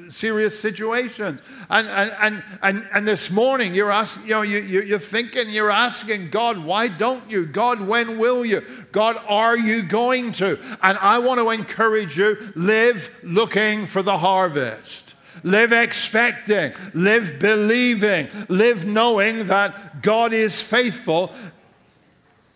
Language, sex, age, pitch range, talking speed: English, male, 50-69, 195-235 Hz, 140 wpm